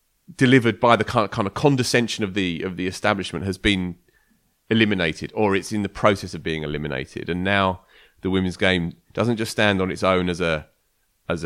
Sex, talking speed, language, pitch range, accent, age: male, 200 wpm, English, 90-110 Hz, British, 30-49